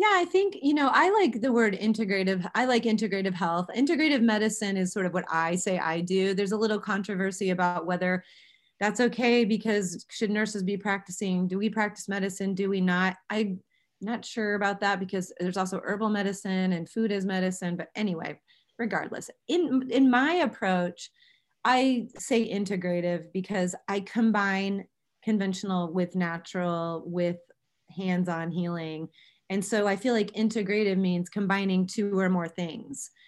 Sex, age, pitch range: female, 30-49, 185-225 Hz